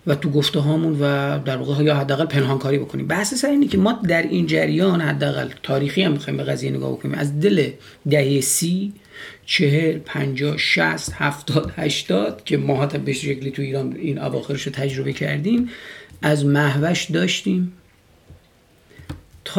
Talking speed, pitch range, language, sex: 145 wpm, 140-175 Hz, Persian, male